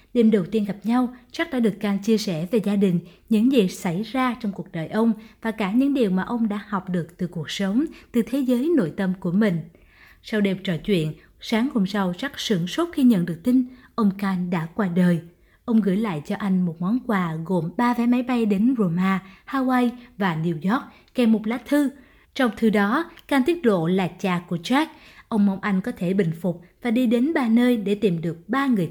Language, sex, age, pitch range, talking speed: Vietnamese, female, 20-39, 185-245 Hz, 230 wpm